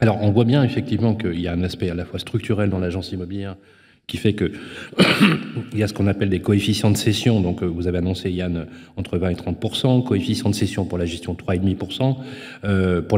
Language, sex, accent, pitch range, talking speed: French, male, French, 95-120 Hz, 220 wpm